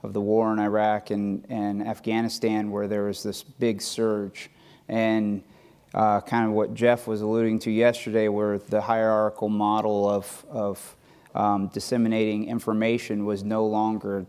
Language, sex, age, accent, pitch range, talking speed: English, male, 30-49, American, 105-115 Hz, 150 wpm